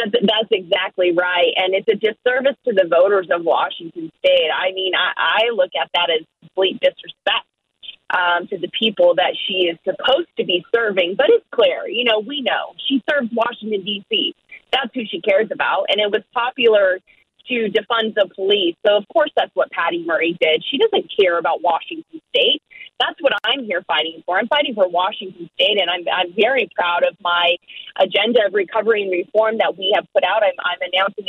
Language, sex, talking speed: English, female, 200 wpm